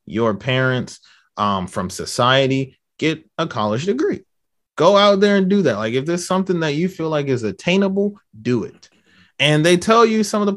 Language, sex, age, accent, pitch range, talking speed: English, male, 30-49, American, 125-175 Hz, 195 wpm